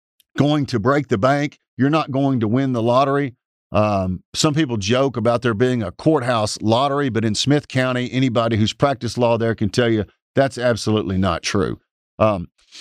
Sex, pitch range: male, 110-145 Hz